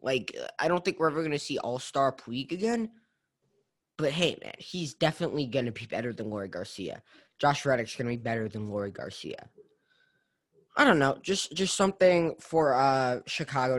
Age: 20-39